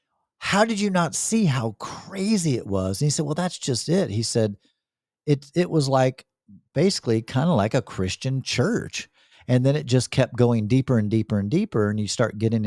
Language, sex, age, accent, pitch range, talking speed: English, male, 40-59, American, 105-150 Hz, 210 wpm